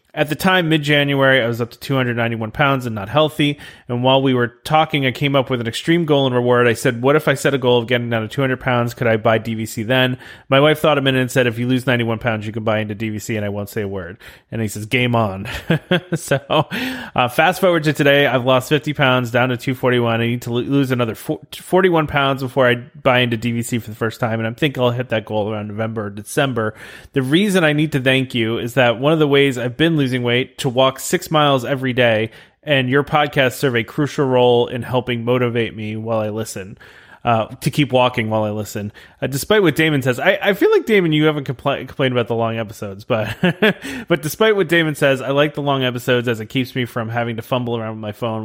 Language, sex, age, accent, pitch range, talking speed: English, male, 30-49, American, 115-145 Hz, 245 wpm